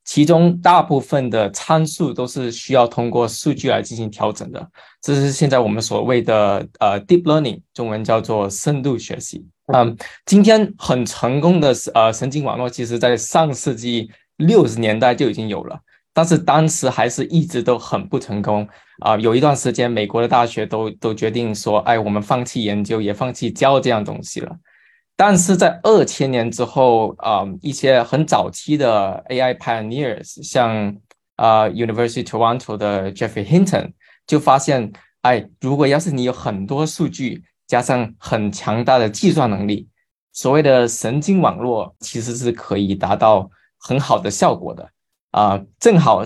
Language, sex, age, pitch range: Chinese, male, 20-39, 110-145 Hz